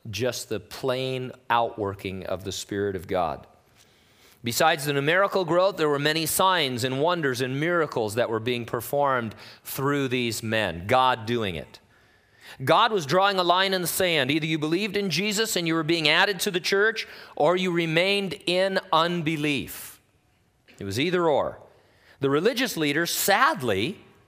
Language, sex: English, male